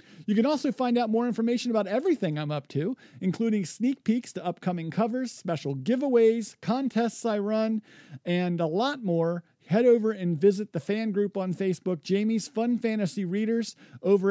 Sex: male